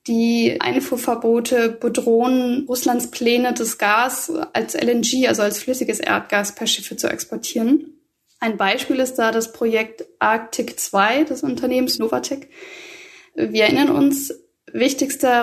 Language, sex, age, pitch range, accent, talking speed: German, female, 10-29, 230-290 Hz, German, 125 wpm